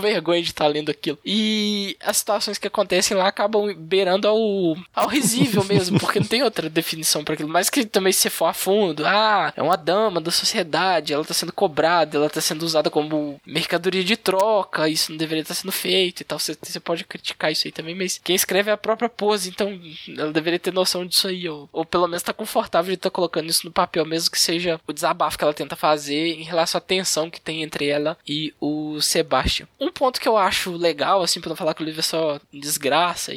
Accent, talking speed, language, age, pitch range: Brazilian, 235 wpm, Portuguese, 10-29, 165-210 Hz